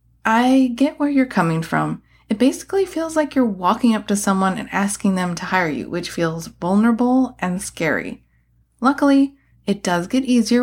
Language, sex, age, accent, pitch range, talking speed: English, female, 30-49, American, 180-255 Hz, 175 wpm